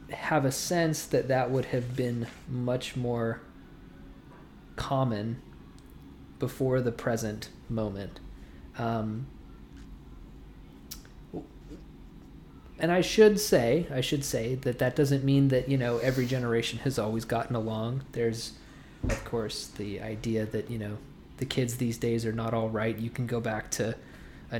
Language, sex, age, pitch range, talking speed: English, male, 20-39, 110-130 Hz, 140 wpm